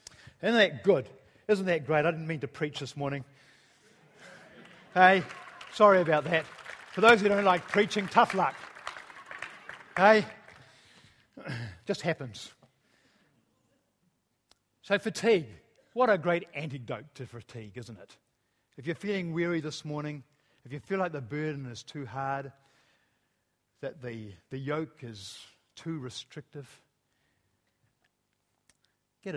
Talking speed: 125 wpm